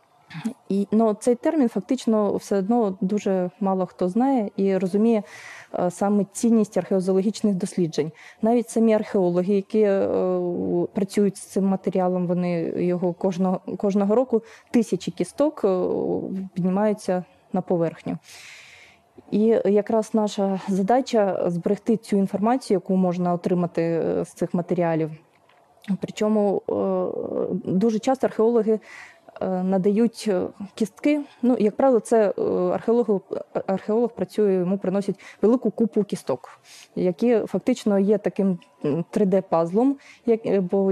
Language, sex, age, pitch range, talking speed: Ukrainian, female, 20-39, 180-220 Hz, 115 wpm